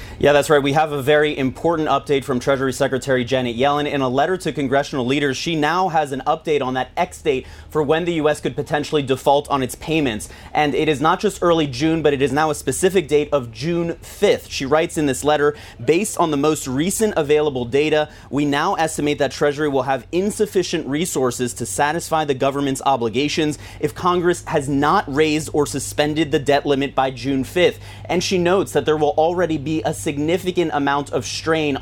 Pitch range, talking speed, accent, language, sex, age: 135-160 Hz, 205 wpm, American, English, male, 30-49